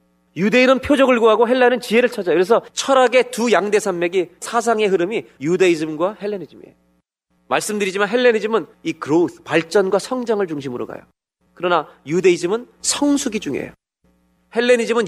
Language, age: Korean, 30-49